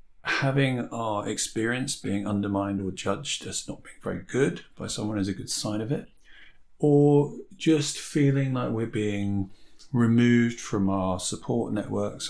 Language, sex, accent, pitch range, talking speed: English, male, British, 95-125 Hz, 150 wpm